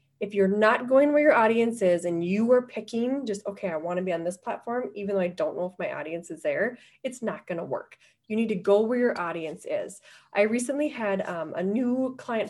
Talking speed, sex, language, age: 245 wpm, female, English, 20-39